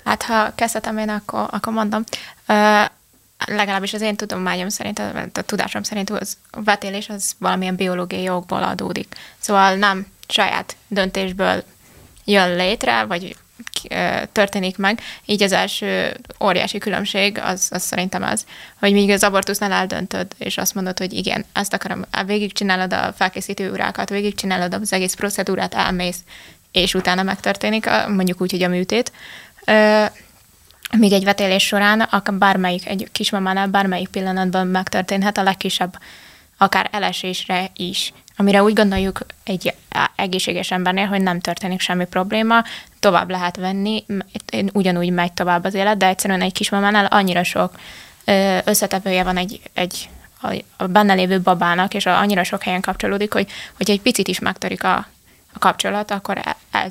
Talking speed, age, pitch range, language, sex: 150 wpm, 20-39, 185-205 Hz, Hungarian, female